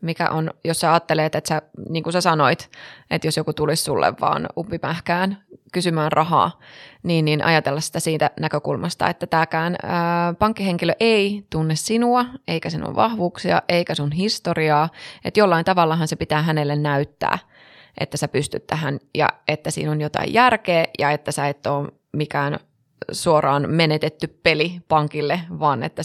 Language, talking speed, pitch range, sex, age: Finnish, 155 wpm, 150-175 Hz, female, 20-39